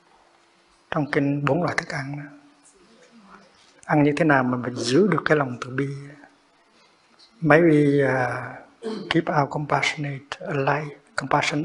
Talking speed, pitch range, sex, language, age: 130 wpm, 135-160 Hz, male, Vietnamese, 60-79